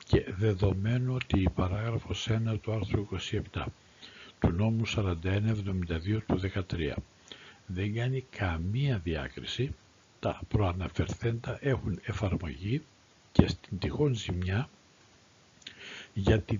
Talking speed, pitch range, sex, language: 100 wpm, 95-115 Hz, male, Greek